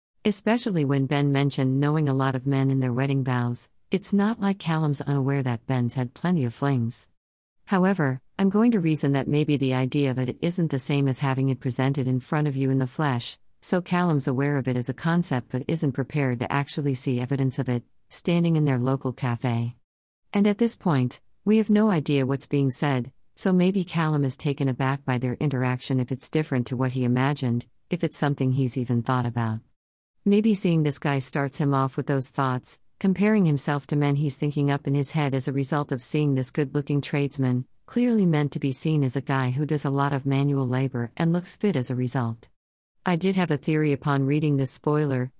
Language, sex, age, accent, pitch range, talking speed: English, female, 50-69, American, 130-155 Hz, 215 wpm